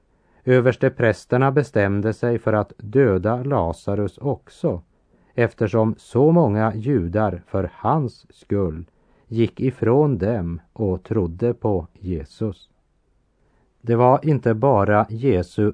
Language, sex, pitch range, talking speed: Swedish, male, 95-120 Hz, 105 wpm